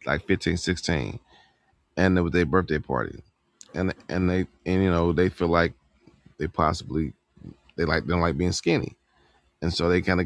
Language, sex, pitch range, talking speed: English, male, 90-110 Hz, 180 wpm